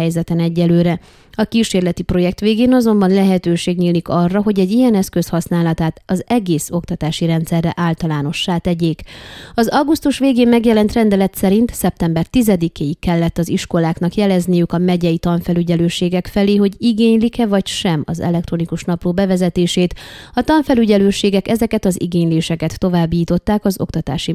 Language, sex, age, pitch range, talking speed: Hungarian, female, 30-49, 170-210 Hz, 130 wpm